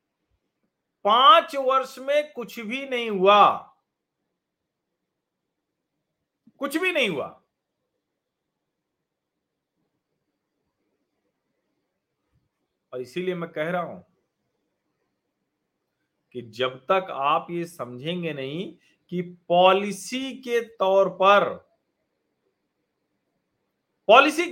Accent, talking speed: native, 75 wpm